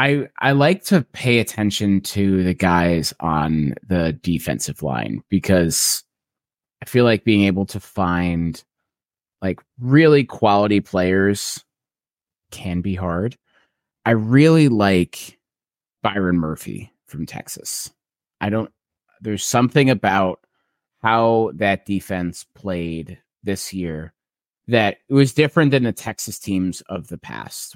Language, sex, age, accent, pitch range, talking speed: English, male, 30-49, American, 90-115 Hz, 125 wpm